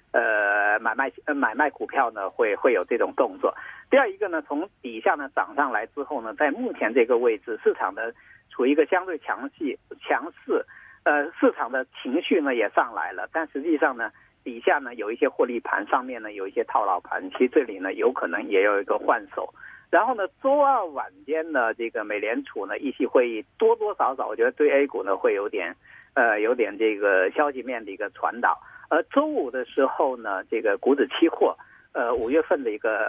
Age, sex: 50-69, male